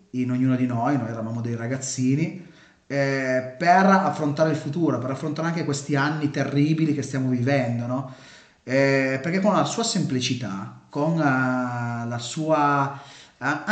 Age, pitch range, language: 30-49, 120-145 Hz, Italian